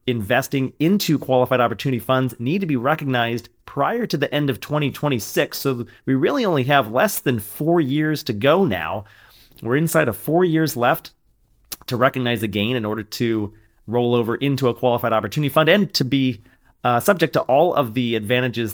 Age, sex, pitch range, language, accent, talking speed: 30-49, male, 120-145 Hz, English, American, 185 wpm